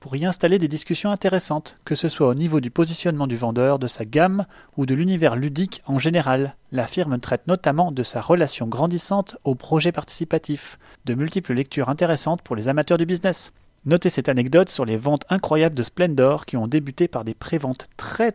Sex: male